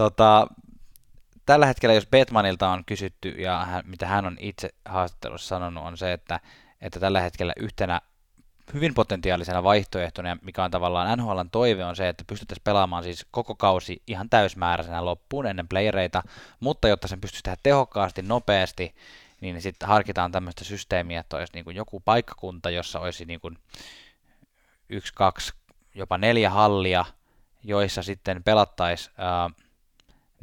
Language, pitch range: Finnish, 90-110 Hz